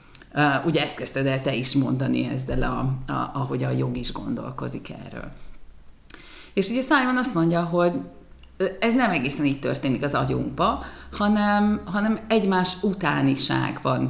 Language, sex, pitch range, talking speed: Hungarian, female, 140-235 Hz, 145 wpm